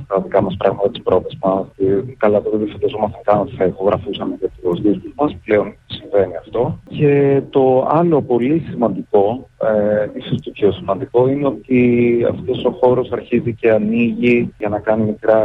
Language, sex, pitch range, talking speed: Greek, male, 100-125 Hz, 165 wpm